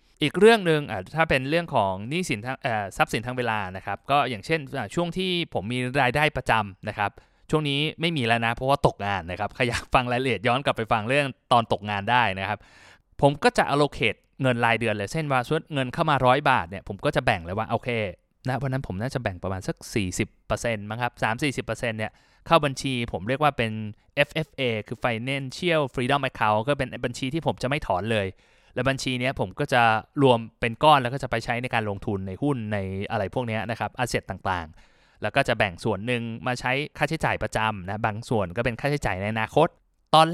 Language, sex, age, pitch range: Thai, male, 20-39, 110-140 Hz